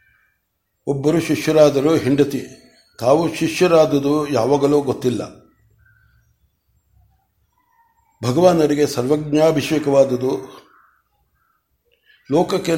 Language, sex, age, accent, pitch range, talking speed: Kannada, male, 60-79, native, 135-160 Hz, 45 wpm